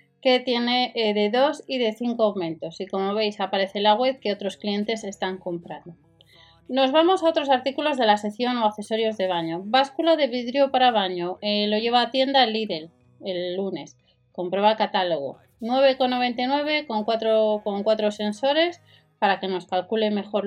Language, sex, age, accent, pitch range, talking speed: Spanish, female, 30-49, Spanish, 195-265 Hz, 165 wpm